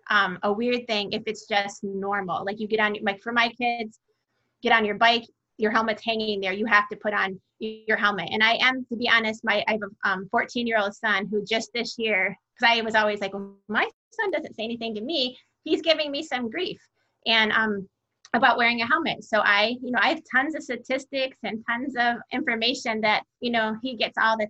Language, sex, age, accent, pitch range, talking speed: English, female, 30-49, American, 215-255 Hz, 235 wpm